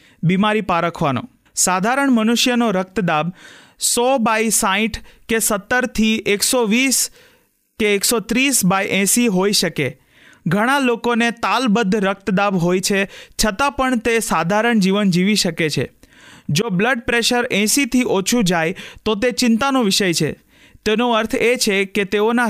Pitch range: 185-235 Hz